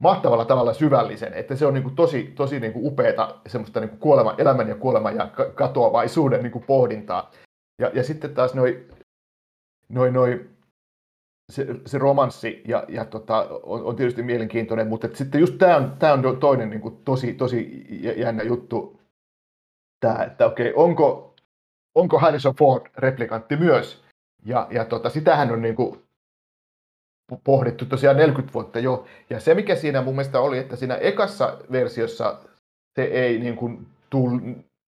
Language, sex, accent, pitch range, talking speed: Finnish, male, native, 120-135 Hz, 135 wpm